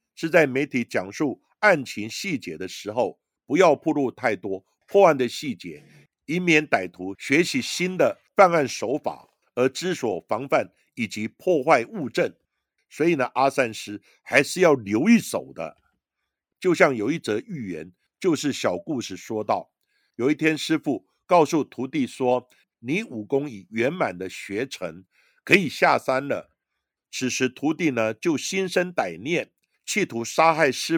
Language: Chinese